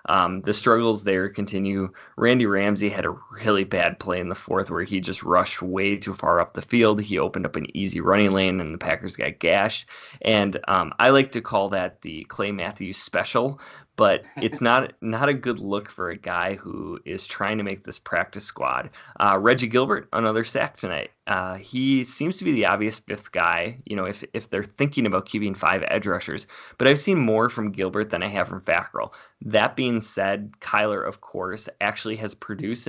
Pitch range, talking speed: 95-115 Hz, 205 wpm